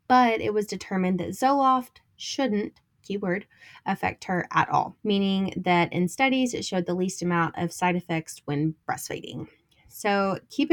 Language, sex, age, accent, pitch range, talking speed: English, female, 20-39, American, 170-220 Hz, 155 wpm